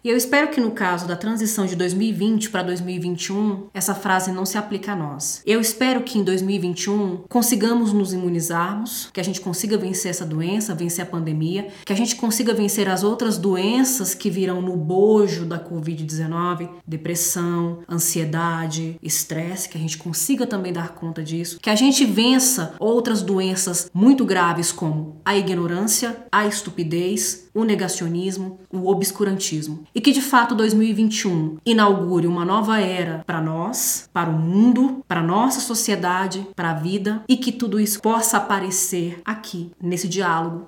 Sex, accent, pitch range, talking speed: female, Brazilian, 175-220 Hz, 160 wpm